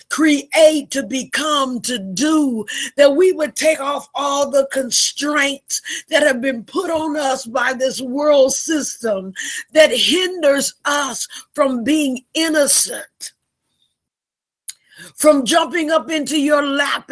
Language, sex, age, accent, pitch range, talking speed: English, female, 50-69, American, 260-305 Hz, 125 wpm